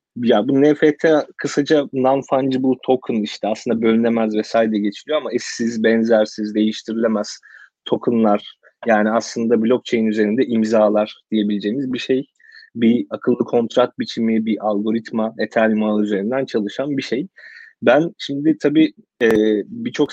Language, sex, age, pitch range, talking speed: Turkish, male, 30-49, 110-150 Hz, 120 wpm